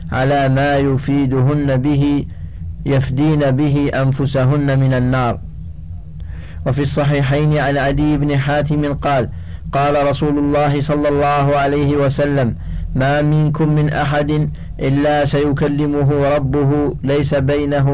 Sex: male